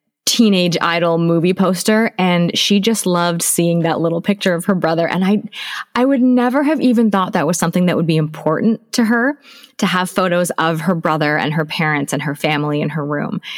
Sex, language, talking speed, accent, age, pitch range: female, English, 210 wpm, American, 20-39, 170-220 Hz